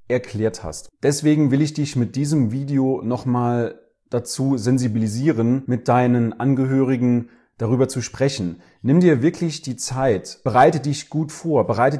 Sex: male